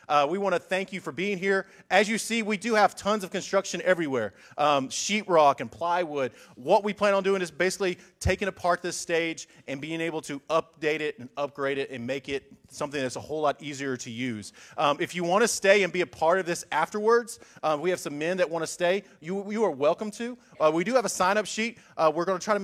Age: 30-49